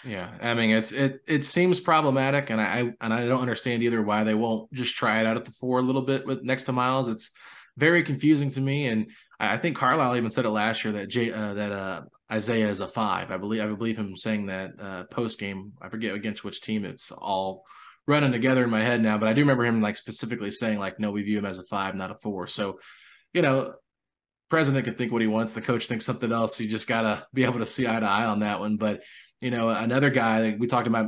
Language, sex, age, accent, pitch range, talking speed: English, male, 20-39, American, 105-120 Hz, 260 wpm